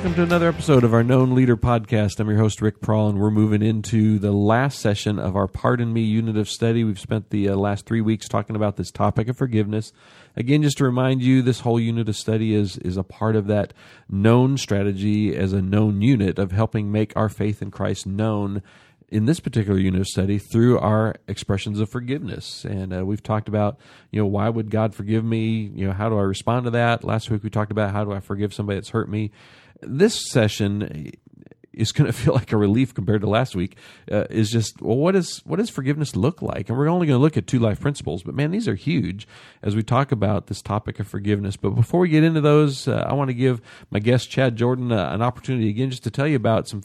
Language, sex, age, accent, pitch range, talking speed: English, male, 40-59, American, 105-125 Hz, 240 wpm